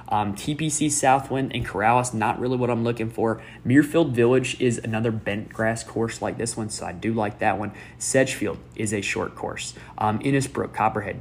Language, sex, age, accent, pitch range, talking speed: English, male, 20-39, American, 110-130 Hz, 185 wpm